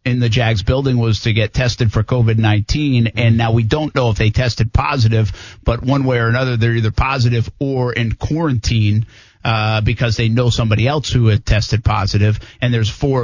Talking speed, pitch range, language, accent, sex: 200 wpm, 110-125 Hz, English, American, male